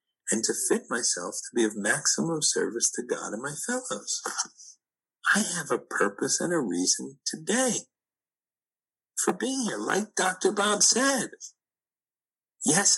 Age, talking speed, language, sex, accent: 50-69, 140 wpm, English, male, American